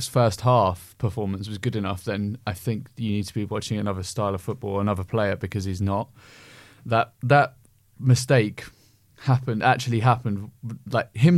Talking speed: 165 wpm